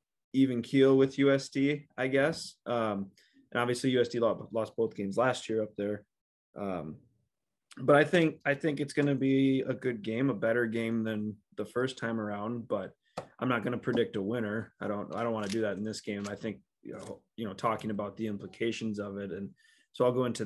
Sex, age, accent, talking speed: male, 20-39, American, 215 wpm